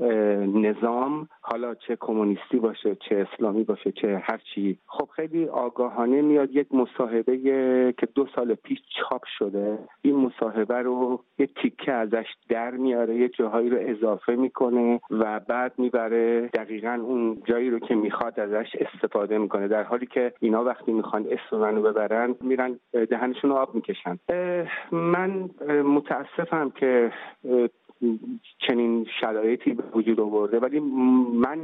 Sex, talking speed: male, 135 wpm